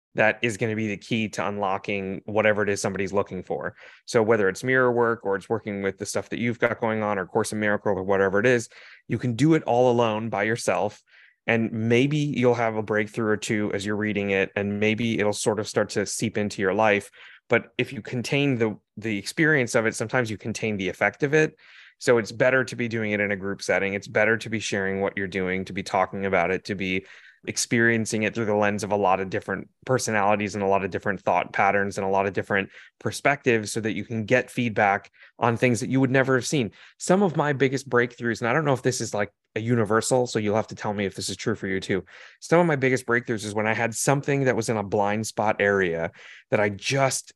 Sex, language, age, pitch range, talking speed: male, English, 20-39, 100-120 Hz, 250 wpm